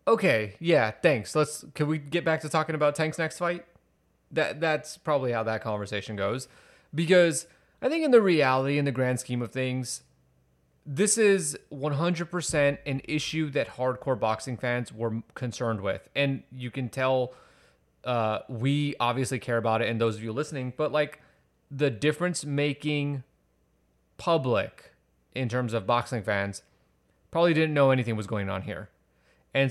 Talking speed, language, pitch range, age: 165 wpm, English, 115-145 Hz, 30-49